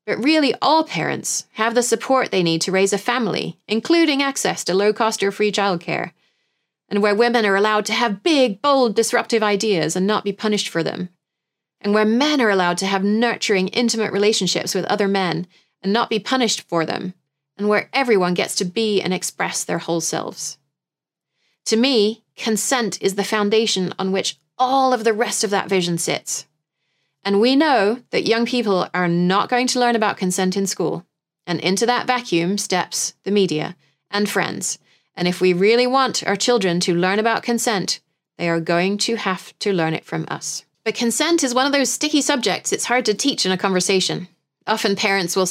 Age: 30-49